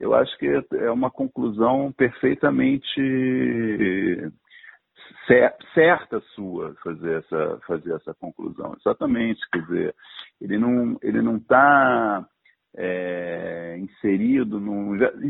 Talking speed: 100 wpm